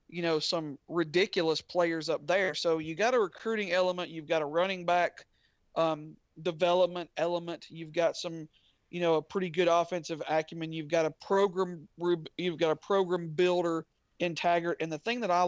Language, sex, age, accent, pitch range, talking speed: English, male, 40-59, American, 160-185 Hz, 180 wpm